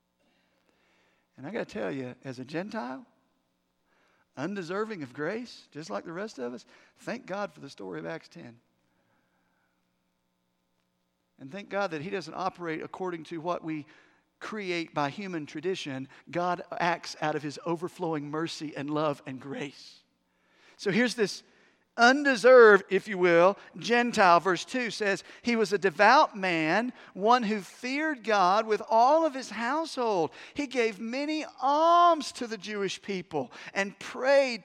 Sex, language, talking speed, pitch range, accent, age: male, English, 150 wpm, 170-225 Hz, American, 50-69